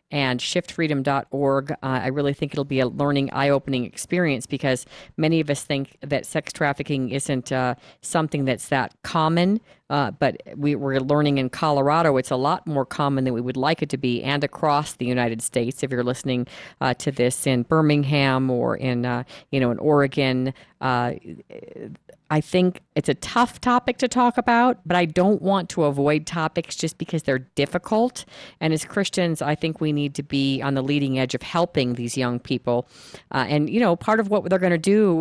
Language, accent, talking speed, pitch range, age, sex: English, American, 195 wpm, 135-170 Hz, 40-59, female